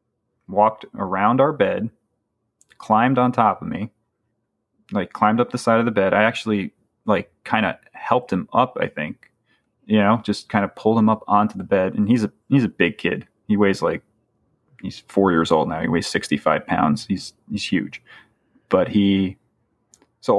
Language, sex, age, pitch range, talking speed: English, male, 30-49, 105-120 Hz, 185 wpm